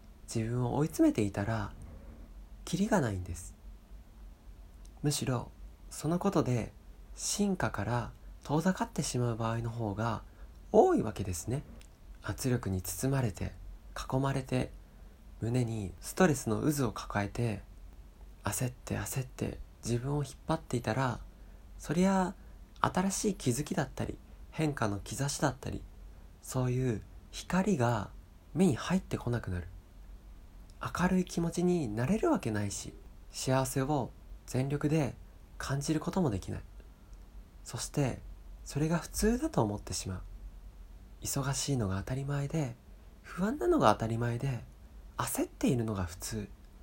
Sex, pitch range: male, 95-140 Hz